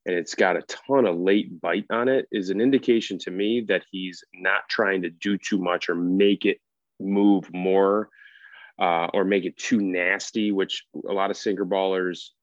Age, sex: 30-49, male